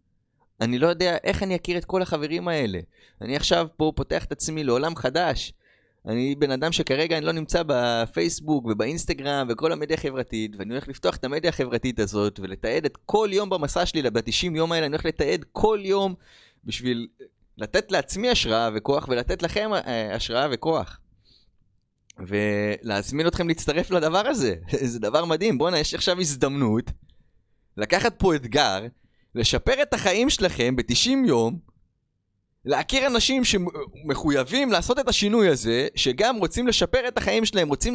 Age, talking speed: 20-39, 150 wpm